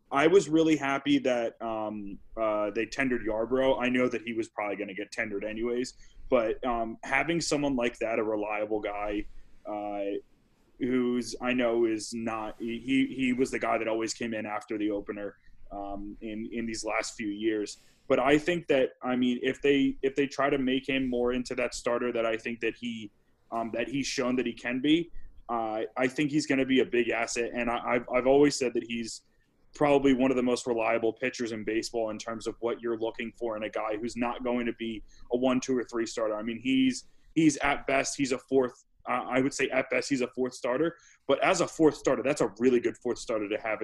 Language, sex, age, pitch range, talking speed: English, male, 20-39, 110-130 Hz, 225 wpm